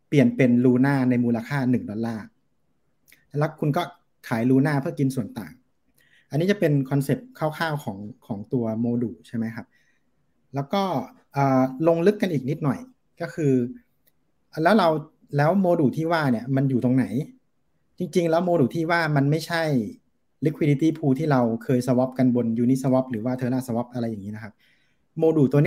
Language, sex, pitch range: Thai, male, 125-155 Hz